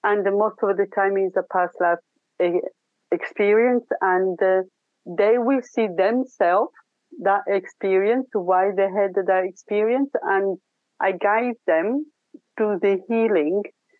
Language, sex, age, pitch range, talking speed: English, female, 50-69, 185-225 Hz, 130 wpm